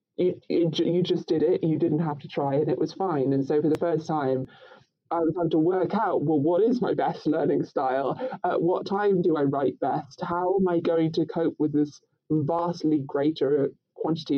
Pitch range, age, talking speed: 145-170 Hz, 20-39, 215 wpm